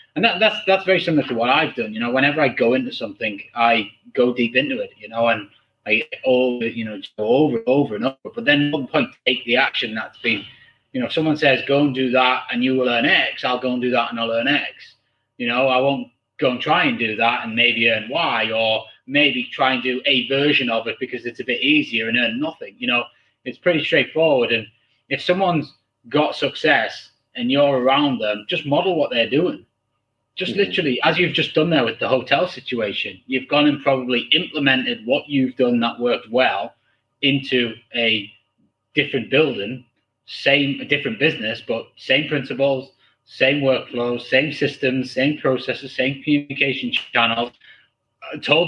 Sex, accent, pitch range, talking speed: male, British, 120-150 Hz, 200 wpm